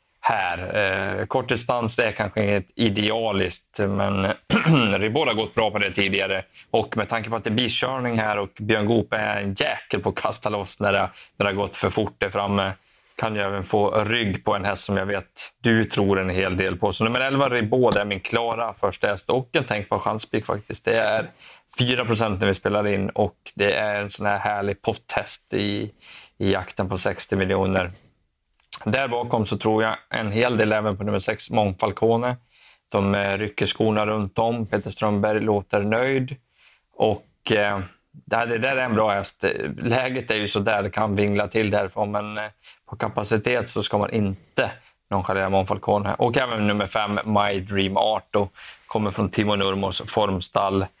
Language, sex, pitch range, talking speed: Swedish, male, 100-115 Hz, 190 wpm